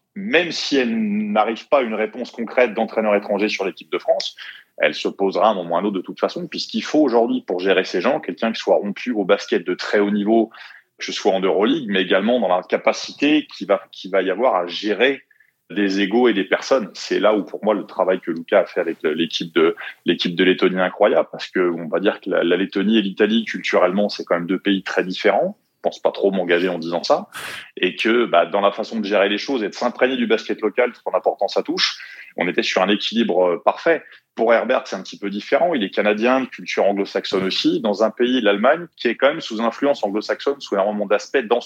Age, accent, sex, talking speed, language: 30-49, French, male, 240 wpm, French